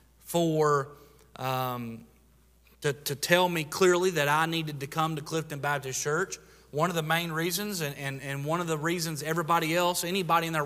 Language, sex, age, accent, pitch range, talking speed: English, male, 30-49, American, 145-175 Hz, 185 wpm